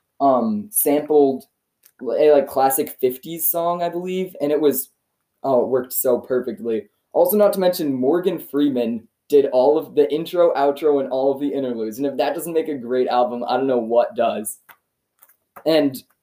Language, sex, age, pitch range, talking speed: English, male, 20-39, 120-150 Hz, 180 wpm